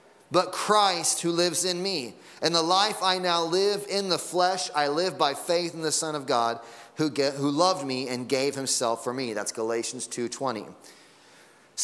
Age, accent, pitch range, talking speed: 30-49, American, 150-185 Hz, 190 wpm